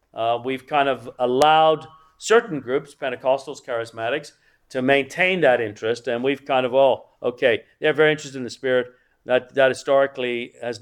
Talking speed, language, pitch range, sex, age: 160 wpm, English, 125-170 Hz, male, 50-69